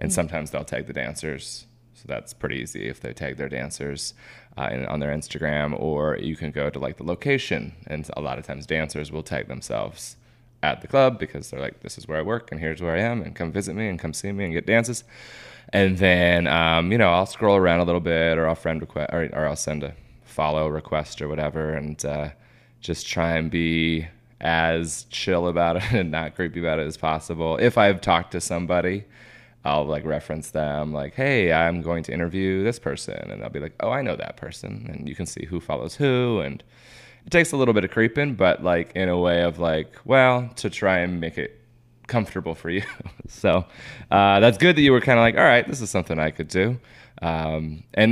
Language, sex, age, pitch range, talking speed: English, male, 20-39, 80-110 Hz, 225 wpm